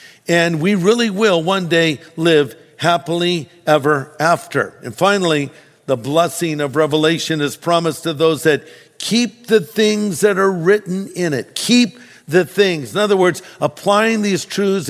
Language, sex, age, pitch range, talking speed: English, male, 50-69, 155-190 Hz, 155 wpm